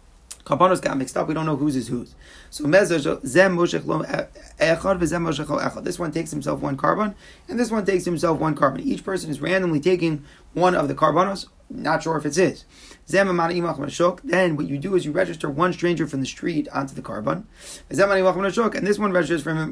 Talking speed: 175 wpm